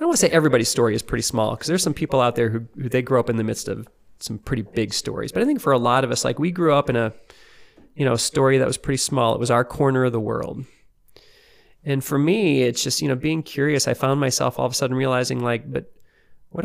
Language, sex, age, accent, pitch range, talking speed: English, male, 30-49, American, 120-145 Hz, 280 wpm